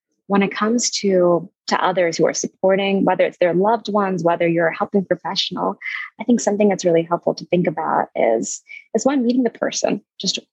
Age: 20-39